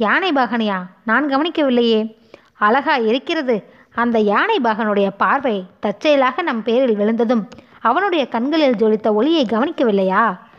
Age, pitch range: 20-39, 210-280 Hz